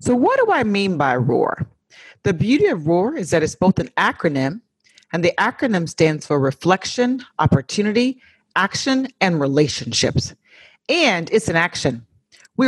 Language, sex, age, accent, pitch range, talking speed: English, female, 40-59, American, 175-275 Hz, 150 wpm